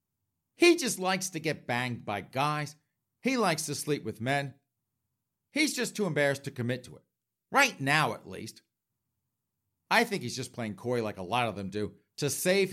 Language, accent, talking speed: English, American, 190 wpm